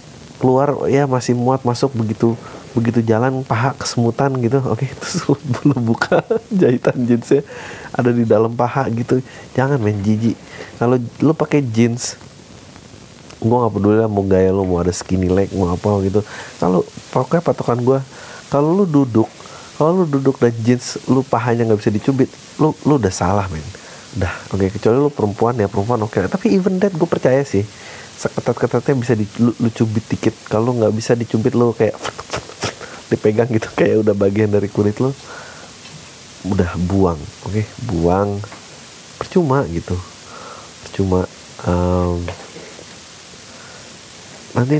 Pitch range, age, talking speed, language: 100-130 Hz, 30-49, 145 wpm, Indonesian